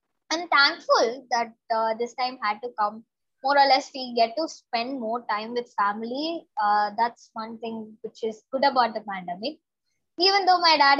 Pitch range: 230-285 Hz